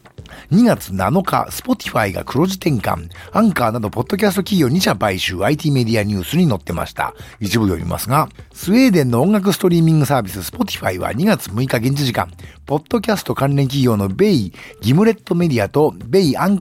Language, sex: Japanese, male